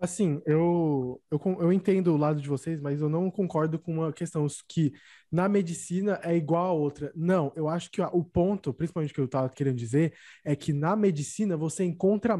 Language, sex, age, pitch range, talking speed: Portuguese, male, 20-39, 150-185 Hz, 200 wpm